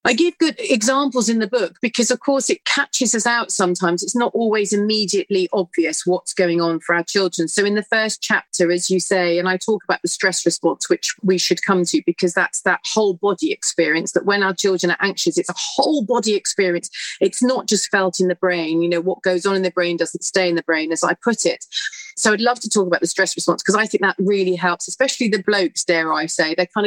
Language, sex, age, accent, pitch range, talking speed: English, female, 40-59, British, 175-225 Hz, 245 wpm